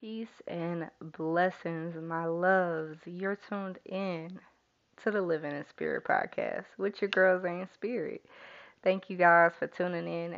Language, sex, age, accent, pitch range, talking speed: English, female, 20-39, American, 160-200 Hz, 145 wpm